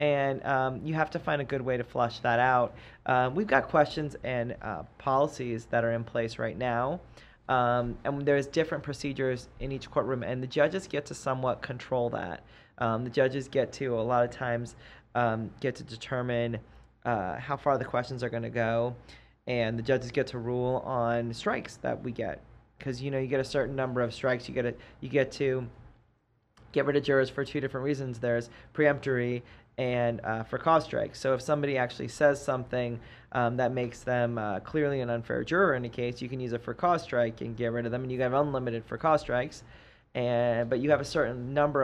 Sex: male